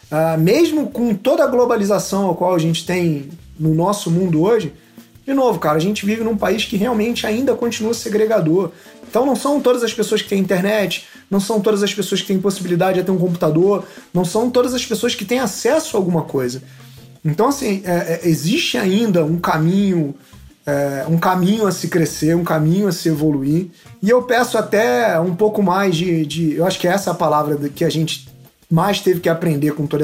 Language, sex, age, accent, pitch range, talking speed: Portuguese, male, 30-49, Brazilian, 155-205 Hz, 210 wpm